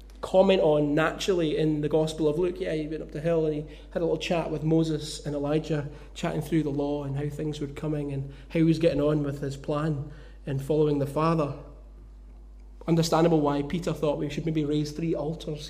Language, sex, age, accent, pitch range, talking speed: English, male, 20-39, British, 140-160 Hz, 215 wpm